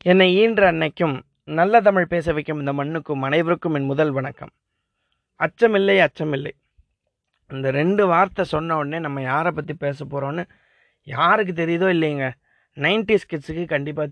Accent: native